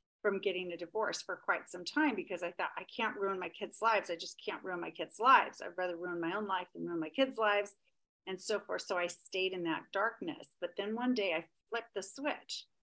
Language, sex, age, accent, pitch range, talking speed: English, female, 40-59, American, 180-265 Hz, 245 wpm